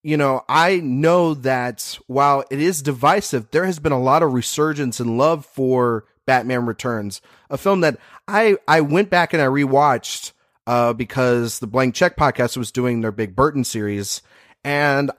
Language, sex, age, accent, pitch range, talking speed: English, male, 30-49, American, 125-155 Hz, 175 wpm